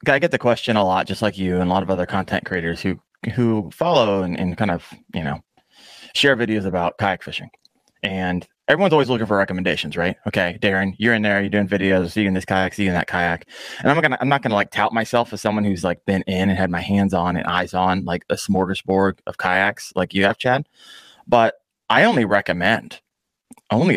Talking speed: 225 wpm